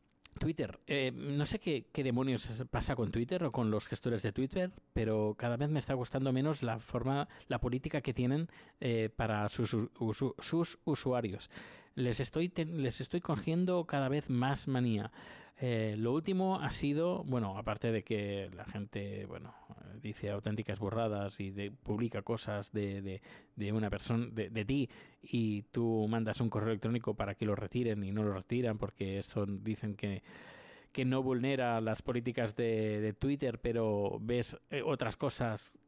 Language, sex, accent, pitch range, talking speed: Spanish, male, Spanish, 110-135 Hz, 170 wpm